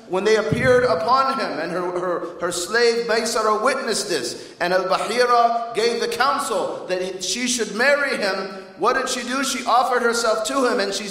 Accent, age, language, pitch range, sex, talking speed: American, 40-59, English, 205-260 Hz, male, 180 wpm